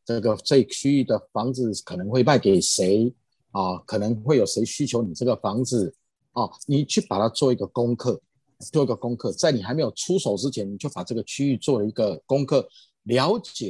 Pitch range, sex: 105-145 Hz, male